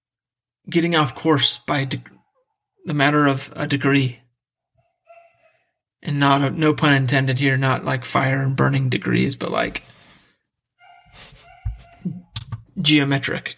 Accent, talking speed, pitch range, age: American, 105 wpm, 130-160 Hz, 30-49